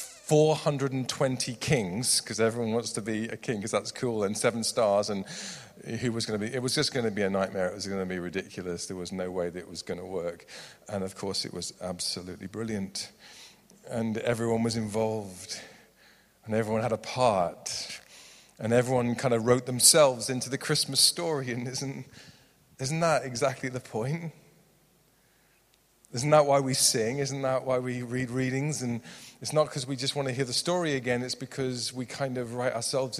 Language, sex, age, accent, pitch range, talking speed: English, male, 40-59, British, 110-140 Hz, 200 wpm